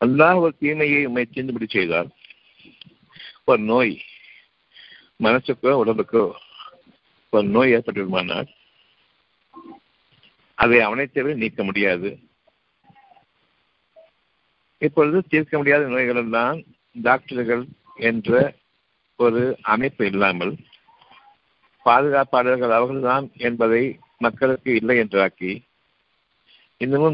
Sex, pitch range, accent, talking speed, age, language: male, 115-140 Hz, native, 80 wpm, 60-79, Tamil